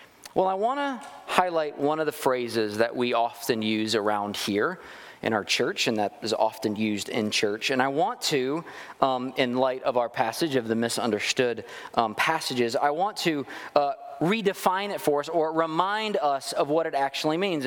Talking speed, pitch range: 190 wpm, 140-195 Hz